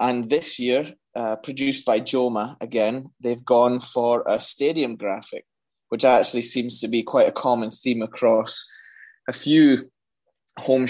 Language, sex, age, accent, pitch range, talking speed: English, male, 20-39, British, 115-140 Hz, 150 wpm